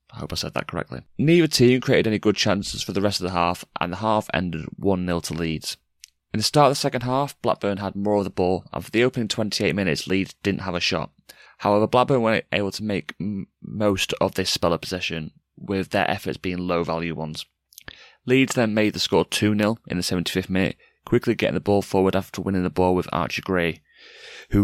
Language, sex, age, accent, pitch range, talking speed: English, male, 30-49, British, 90-110 Hz, 220 wpm